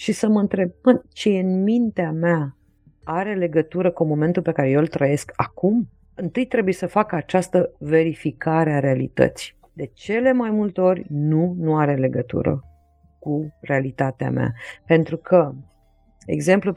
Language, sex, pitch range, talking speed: Romanian, female, 150-205 Hz, 150 wpm